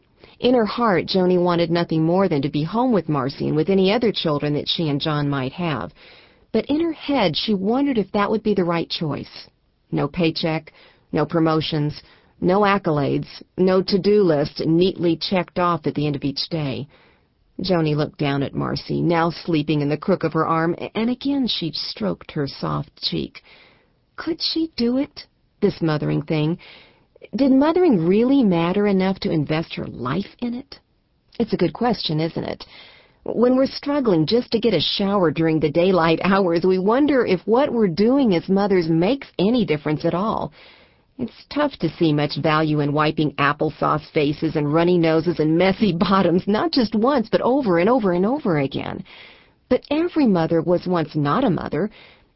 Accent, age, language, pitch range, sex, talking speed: American, 40-59, English, 155-220 Hz, female, 180 wpm